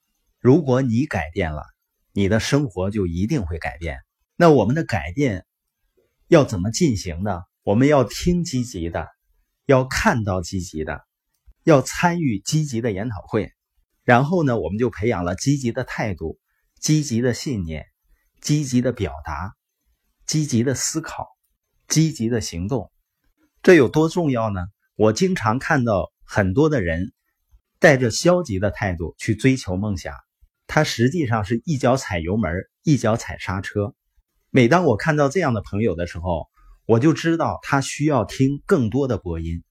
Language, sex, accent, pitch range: Chinese, male, native, 95-140 Hz